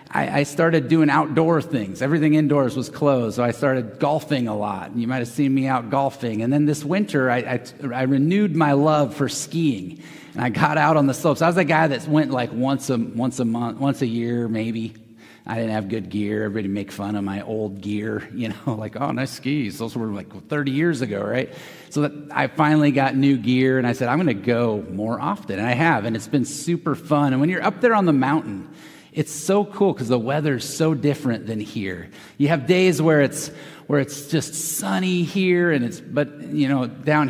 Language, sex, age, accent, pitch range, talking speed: English, male, 30-49, American, 120-155 Hz, 220 wpm